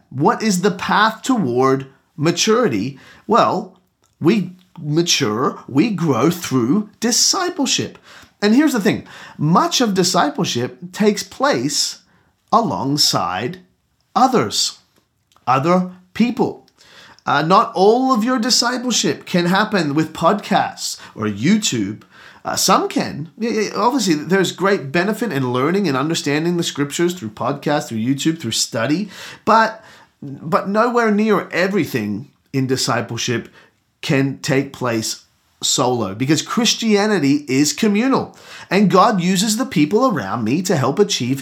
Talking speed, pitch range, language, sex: 120 wpm, 145-215 Hz, English, male